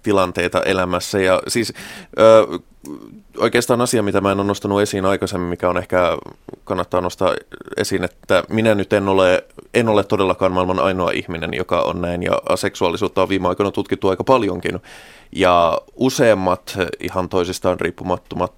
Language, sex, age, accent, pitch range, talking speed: Finnish, male, 20-39, native, 90-100 Hz, 150 wpm